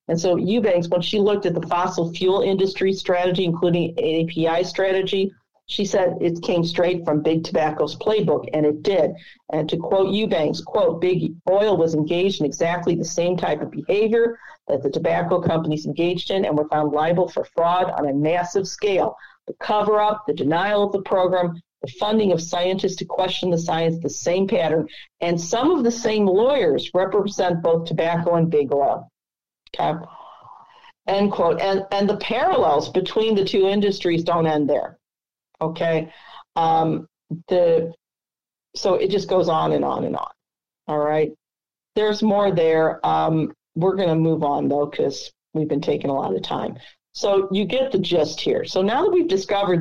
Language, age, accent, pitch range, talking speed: English, 50-69, American, 165-200 Hz, 175 wpm